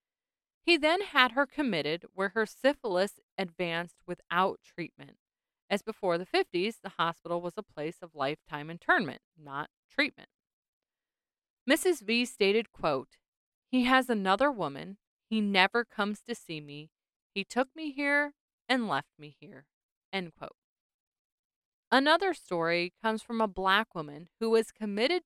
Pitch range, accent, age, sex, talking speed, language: 180-265 Hz, American, 30-49, female, 140 wpm, English